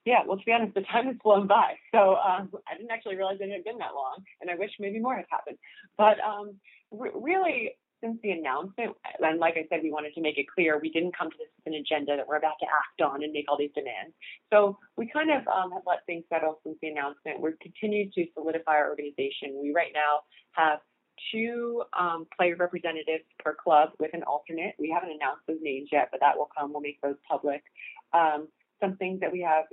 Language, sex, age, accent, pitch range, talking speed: English, female, 30-49, American, 150-200 Hz, 230 wpm